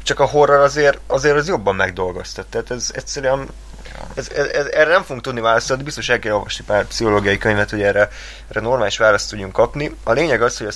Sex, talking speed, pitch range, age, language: male, 220 wpm, 100-120 Hz, 20-39, Hungarian